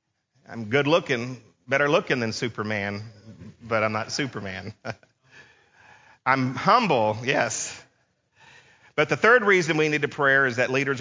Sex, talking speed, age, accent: male, 125 wpm, 40-59, American